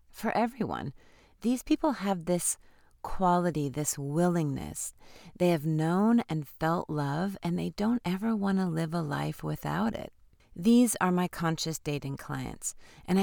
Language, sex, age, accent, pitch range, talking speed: English, female, 40-59, American, 145-180 Hz, 150 wpm